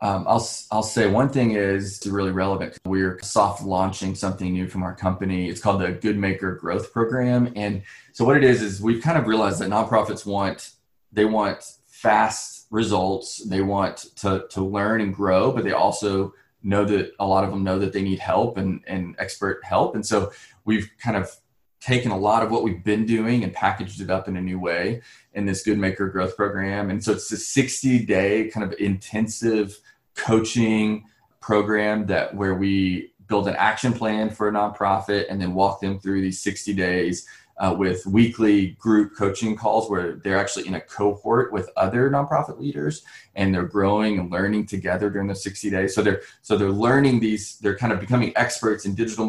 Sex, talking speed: male, 195 wpm